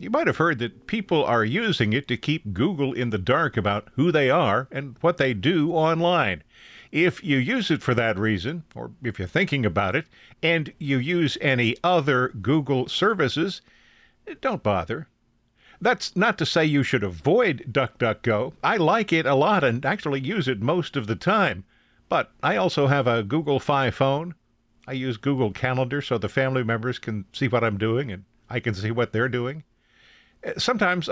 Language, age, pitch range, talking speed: English, 50-69, 115-165 Hz, 185 wpm